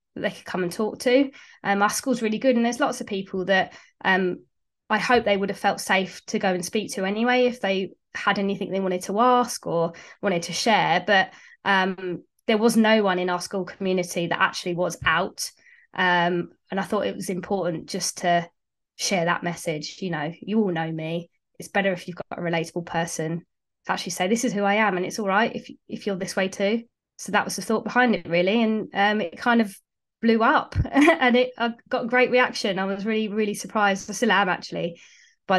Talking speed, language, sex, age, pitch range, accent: 225 wpm, English, female, 20-39, 180-215 Hz, British